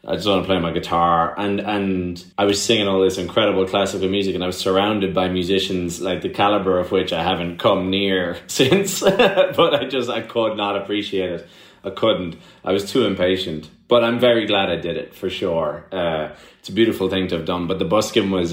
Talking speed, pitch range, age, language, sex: 220 wpm, 90-105 Hz, 30-49, English, male